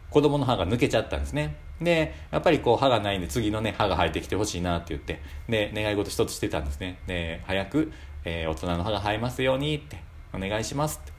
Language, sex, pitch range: Japanese, male, 85-125 Hz